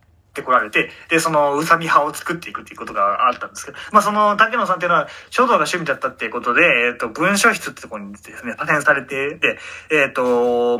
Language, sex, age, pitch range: Japanese, male, 20-39, 140-195 Hz